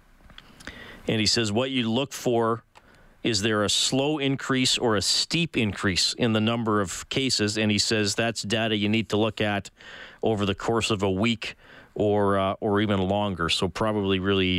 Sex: male